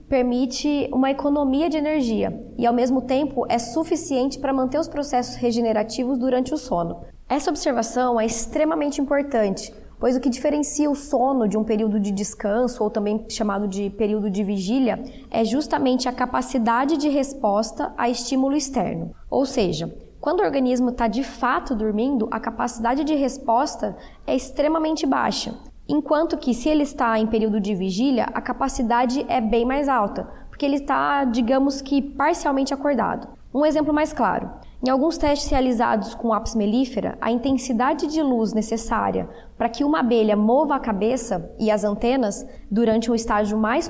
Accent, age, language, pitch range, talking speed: Brazilian, 20-39, Portuguese, 230-280 Hz, 165 wpm